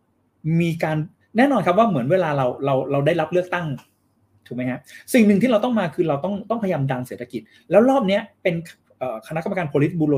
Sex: male